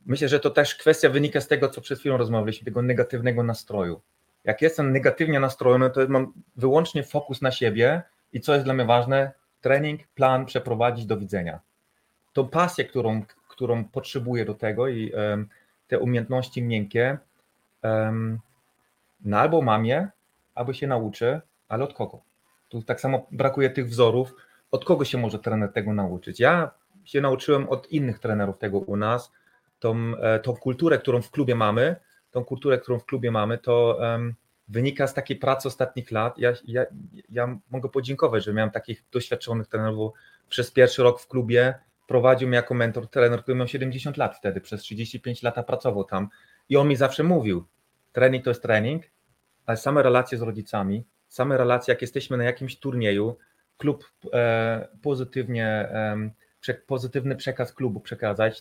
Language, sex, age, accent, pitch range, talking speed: Polish, male, 30-49, native, 110-135 Hz, 160 wpm